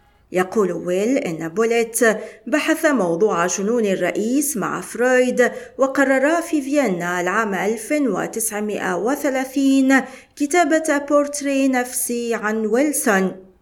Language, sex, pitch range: Arabic, female, 185-270 Hz